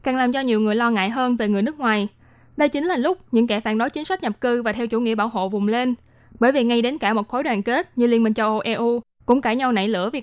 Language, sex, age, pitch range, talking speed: Vietnamese, female, 20-39, 215-255 Hz, 310 wpm